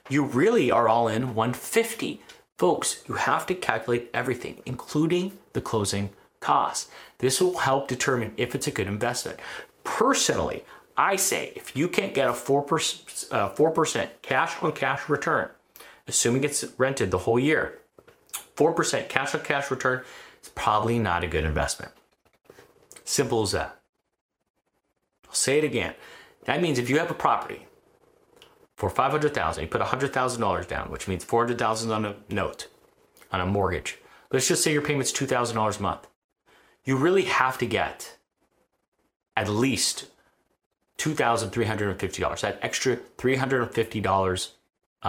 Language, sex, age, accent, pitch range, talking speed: English, male, 30-49, American, 105-140 Hz, 140 wpm